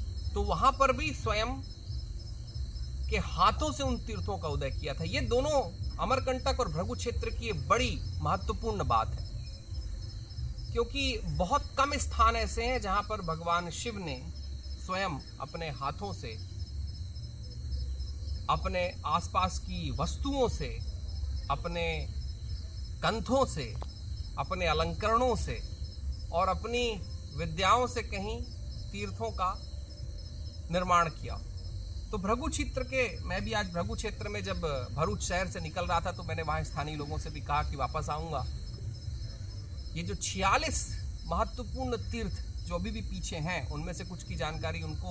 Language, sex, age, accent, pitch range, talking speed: Hindi, male, 30-49, native, 75-100 Hz, 135 wpm